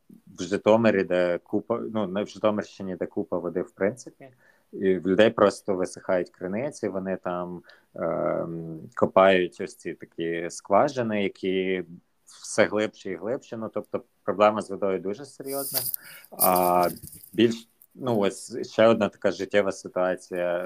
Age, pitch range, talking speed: 30-49, 90-105 Hz, 135 wpm